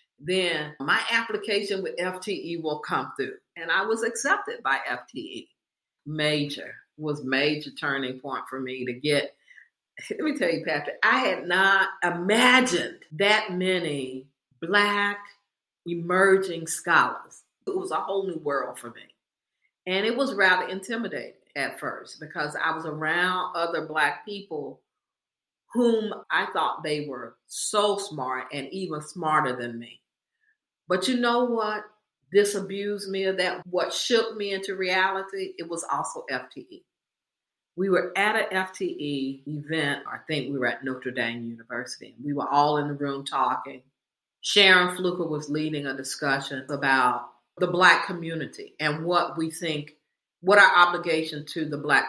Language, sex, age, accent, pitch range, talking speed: English, female, 40-59, American, 150-205 Hz, 150 wpm